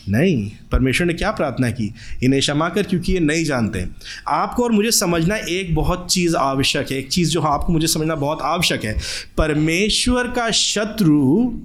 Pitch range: 130-180 Hz